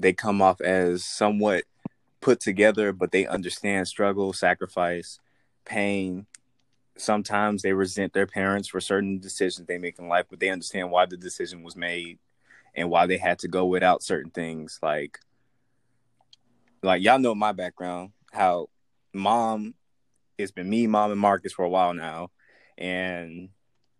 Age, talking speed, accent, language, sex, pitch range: 20-39, 155 wpm, American, English, male, 95-110 Hz